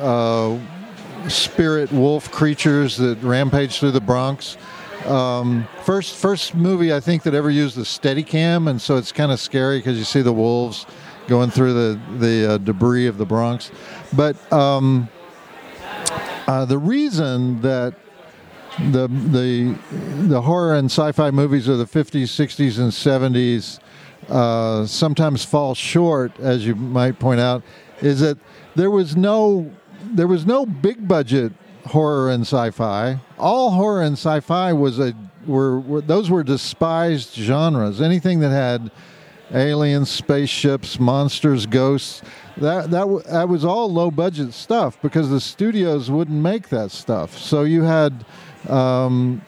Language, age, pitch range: English, 50-69, 125-170 Hz